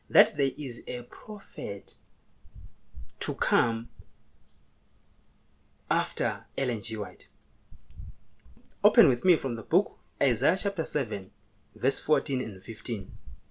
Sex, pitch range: male, 105-150 Hz